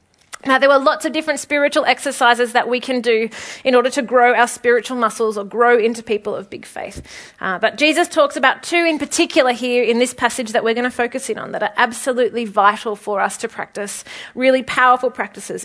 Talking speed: 215 wpm